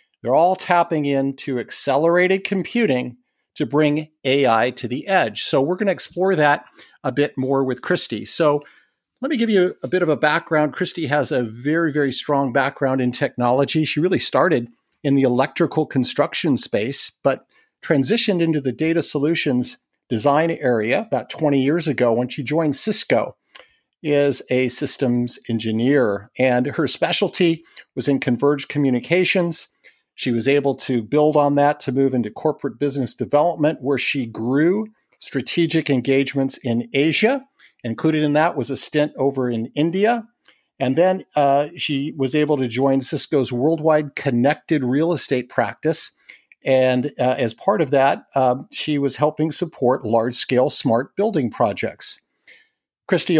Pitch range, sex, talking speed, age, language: 130-160 Hz, male, 155 wpm, 50-69, English